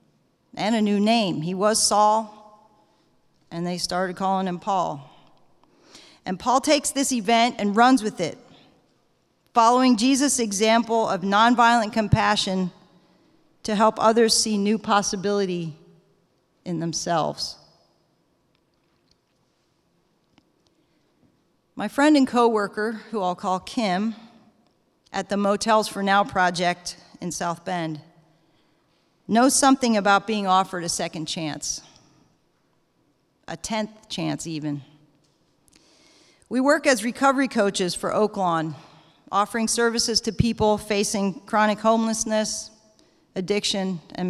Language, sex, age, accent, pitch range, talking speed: English, female, 40-59, American, 175-230 Hz, 110 wpm